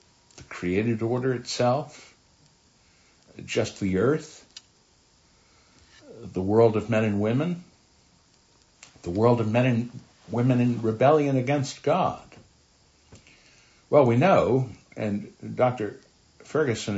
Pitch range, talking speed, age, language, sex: 90-125 Hz, 100 wpm, 60-79, English, male